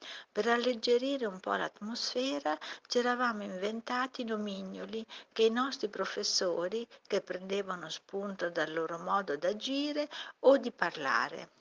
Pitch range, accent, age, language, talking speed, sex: 190-255 Hz, native, 50-69, Italian, 115 wpm, female